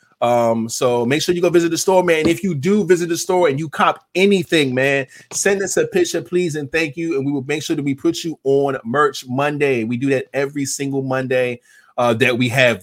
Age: 20-39